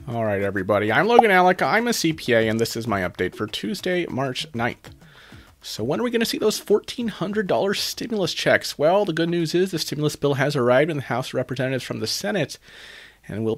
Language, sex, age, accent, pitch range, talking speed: English, male, 30-49, American, 120-165 Hz, 210 wpm